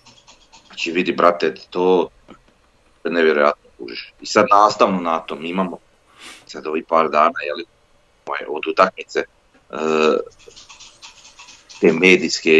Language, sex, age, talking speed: Croatian, male, 40-59, 90 wpm